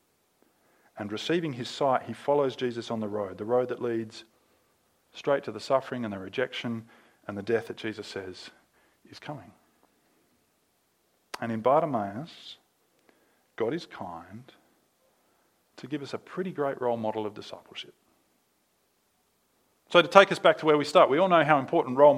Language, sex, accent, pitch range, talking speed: English, male, Australian, 115-150 Hz, 160 wpm